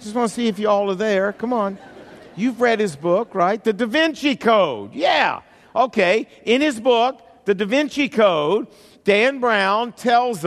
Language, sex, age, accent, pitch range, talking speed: English, male, 50-69, American, 190-240 Hz, 190 wpm